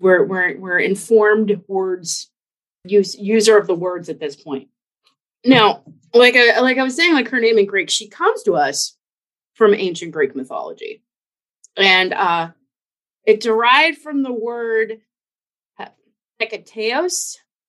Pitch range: 180-235 Hz